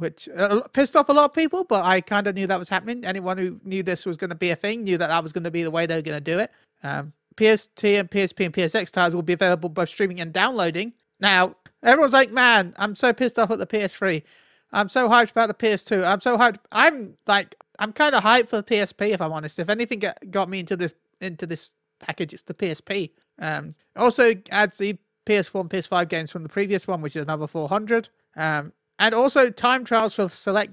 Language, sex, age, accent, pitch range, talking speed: English, male, 30-49, British, 170-220 Hz, 240 wpm